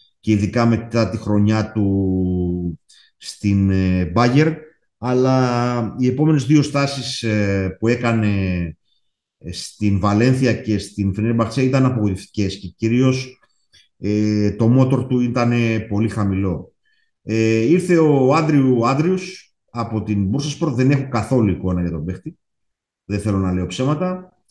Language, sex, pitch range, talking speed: Greek, male, 105-135 Hz, 125 wpm